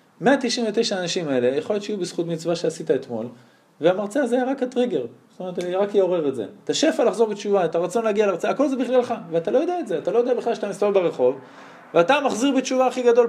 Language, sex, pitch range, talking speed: Hebrew, male, 160-235 Hz, 225 wpm